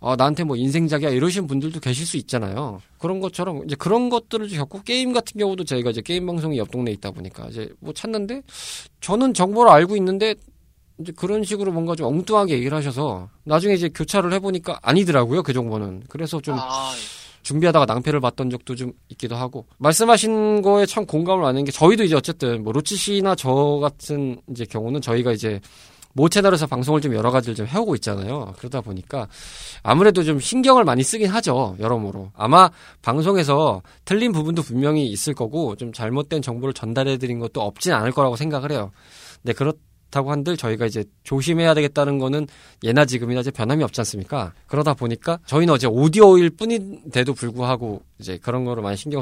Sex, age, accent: male, 20-39, native